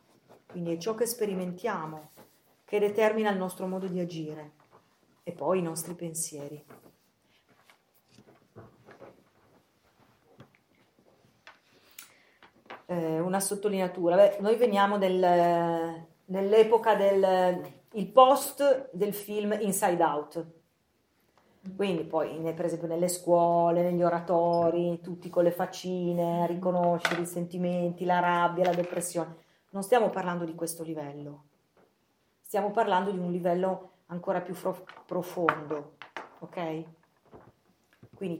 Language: English